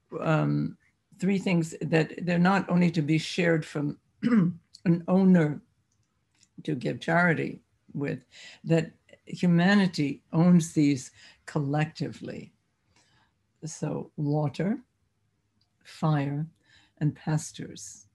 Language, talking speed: English, 90 wpm